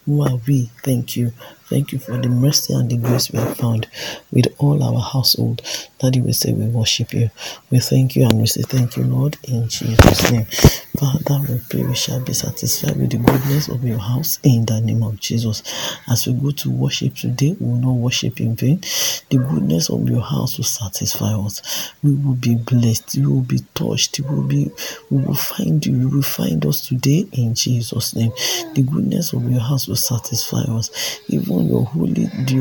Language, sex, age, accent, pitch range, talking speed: English, male, 50-69, Nigerian, 115-140 Hz, 200 wpm